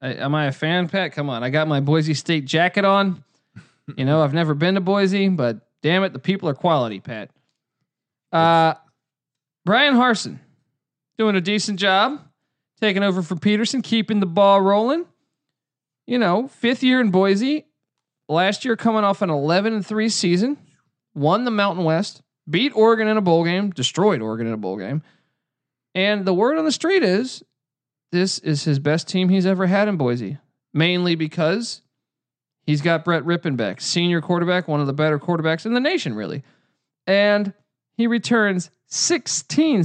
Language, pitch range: English, 150-210 Hz